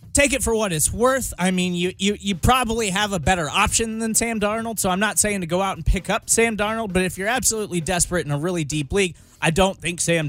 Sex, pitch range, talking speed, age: male, 160-215 Hz, 260 wpm, 20-39